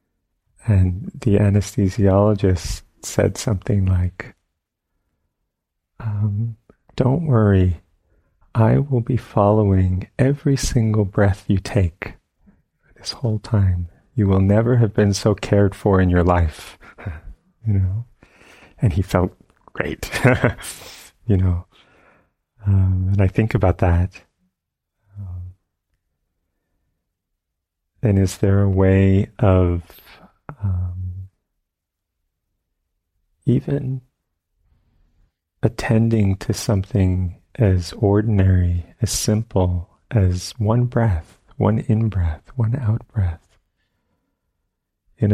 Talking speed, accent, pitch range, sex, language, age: 95 wpm, American, 90-105 Hz, male, English, 30-49